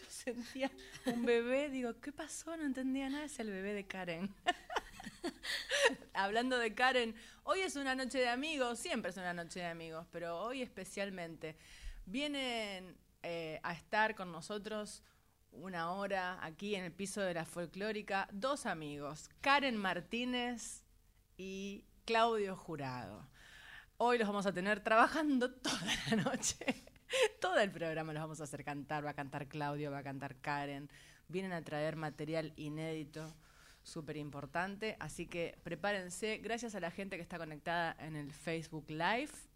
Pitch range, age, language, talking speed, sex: 155-230 Hz, 30-49, Spanish, 150 wpm, female